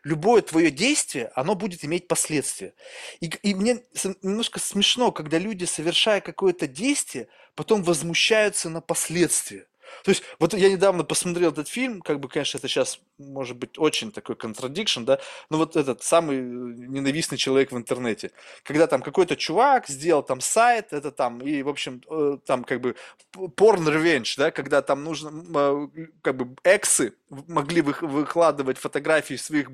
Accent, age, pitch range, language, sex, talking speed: native, 20-39, 155-215 Hz, Russian, male, 155 wpm